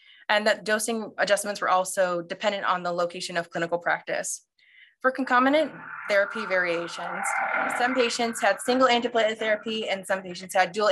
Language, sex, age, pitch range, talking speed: English, female, 20-39, 185-250 Hz, 155 wpm